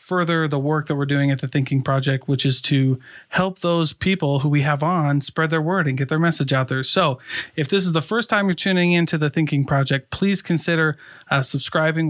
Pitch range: 140-160 Hz